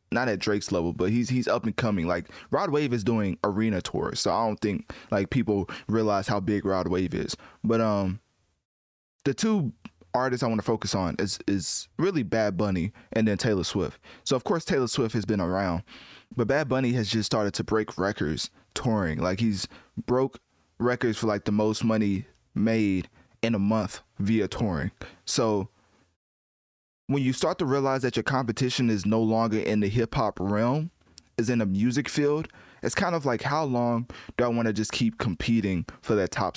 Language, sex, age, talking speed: English, male, 20-39, 195 wpm